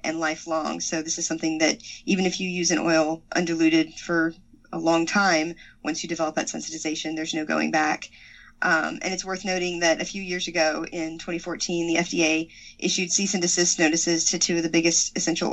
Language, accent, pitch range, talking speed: English, American, 160-185 Hz, 200 wpm